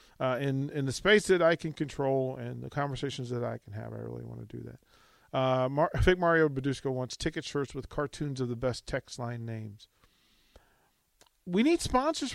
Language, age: English, 40-59